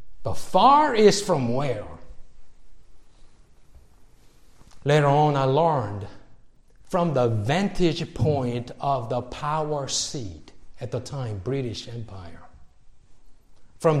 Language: English